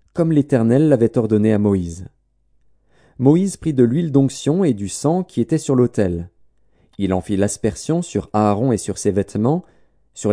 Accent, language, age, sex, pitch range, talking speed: French, French, 40-59, male, 105-140 Hz, 170 wpm